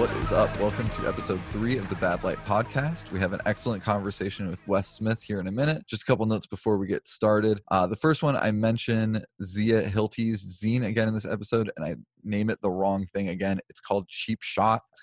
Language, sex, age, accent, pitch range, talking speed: English, male, 20-39, American, 95-110 Hz, 230 wpm